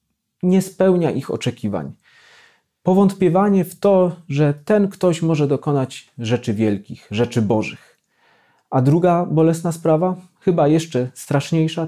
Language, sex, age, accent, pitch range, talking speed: Polish, male, 30-49, native, 120-170 Hz, 115 wpm